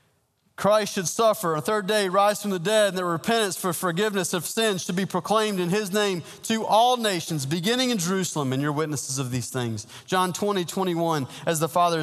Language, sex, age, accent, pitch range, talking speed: English, male, 30-49, American, 145-205 Hz, 205 wpm